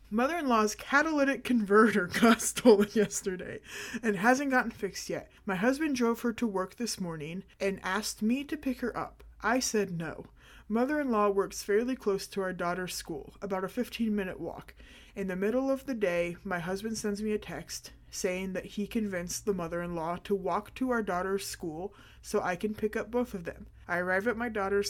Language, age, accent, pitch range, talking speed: English, 30-49, American, 180-220 Hz, 190 wpm